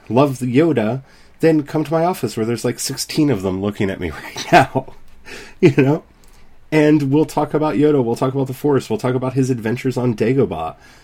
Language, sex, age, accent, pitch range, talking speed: English, male, 30-49, American, 100-135 Hz, 200 wpm